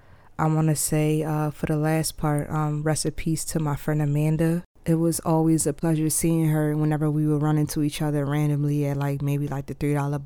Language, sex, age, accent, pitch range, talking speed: English, female, 20-39, American, 150-170 Hz, 220 wpm